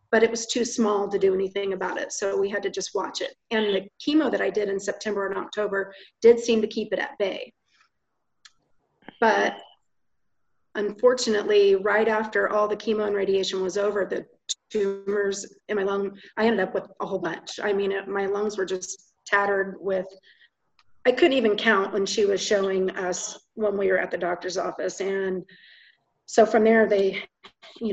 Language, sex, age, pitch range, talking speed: English, female, 40-59, 195-220 Hz, 185 wpm